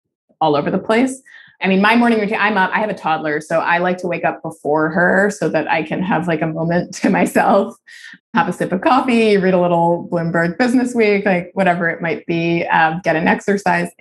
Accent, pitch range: American, 155-185 Hz